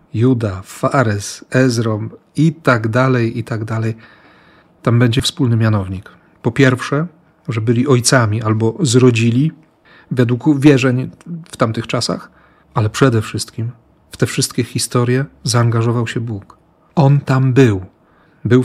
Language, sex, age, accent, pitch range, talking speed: Polish, male, 40-59, native, 115-145 Hz, 125 wpm